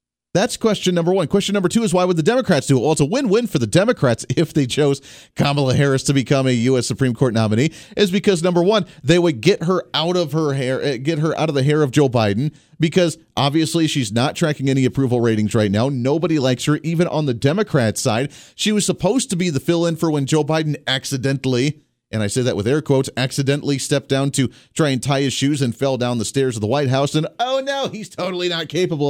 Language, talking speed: English, 240 wpm